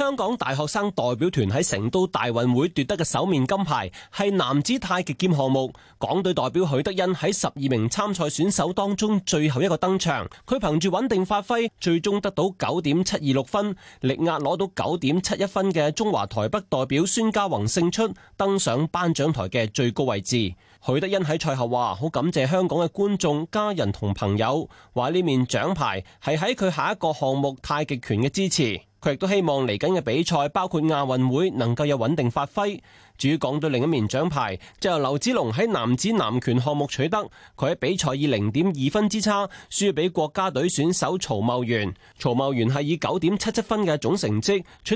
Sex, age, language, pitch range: male, 30-49, Chinese, 130-190 Hz